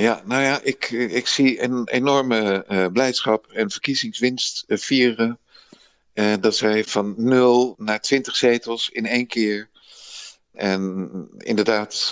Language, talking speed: Dutch, 130 wpm